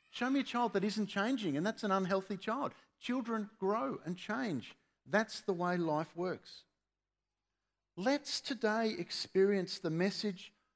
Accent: Australian